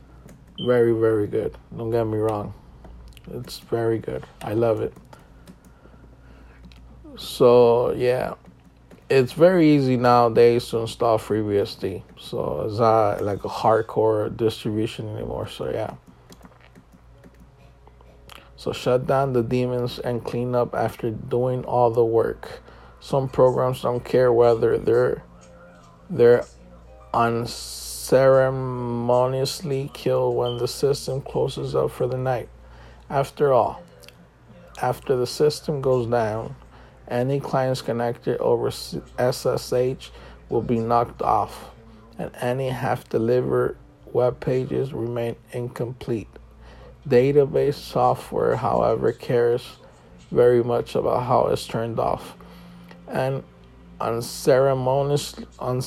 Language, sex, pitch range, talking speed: English, male, 105-130 Hz, 110 wpm